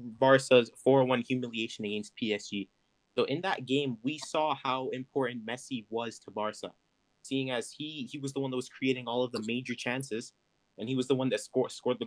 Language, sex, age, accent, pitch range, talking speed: English, male, 20-39, American, 120-140 Hz, 205 wpm